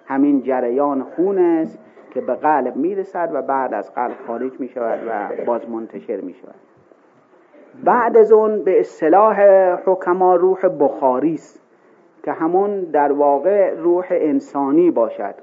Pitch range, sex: 130-210 Hz, male